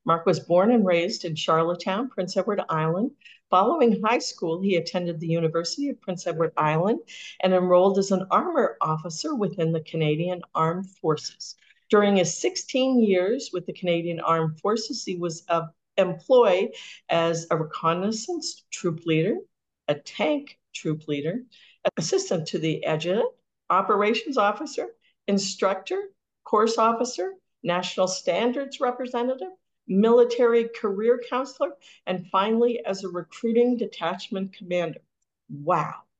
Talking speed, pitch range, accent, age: 125 wpm, 175-230 Hz, American, 50-69